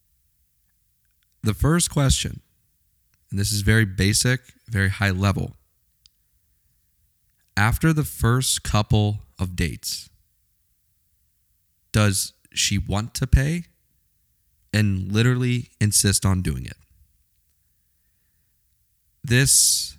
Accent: American